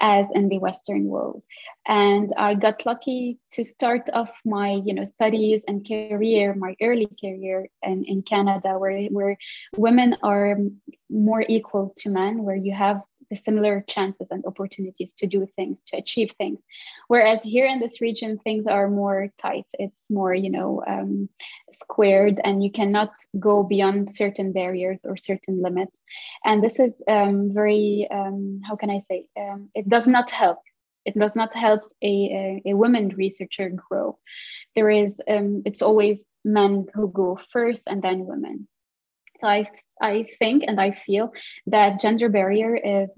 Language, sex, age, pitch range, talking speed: English, female, 20-39, 195-220 Hz, 165 wpm